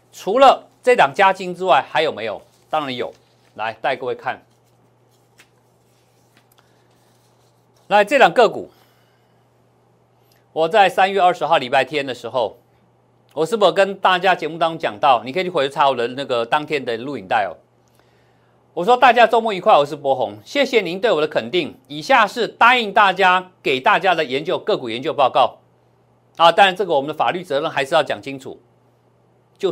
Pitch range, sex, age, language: 135-190 Hz, male, 50-69, Chinese